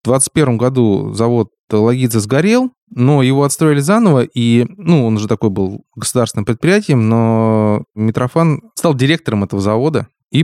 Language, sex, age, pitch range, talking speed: Russian, male, 20-39, 110-140 Hz, 145 wpm